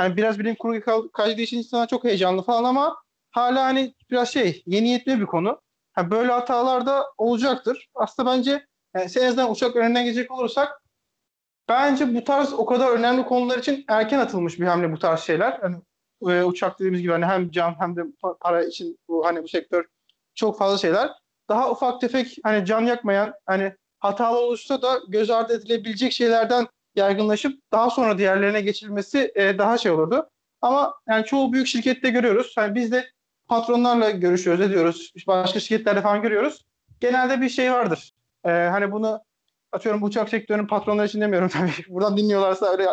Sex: male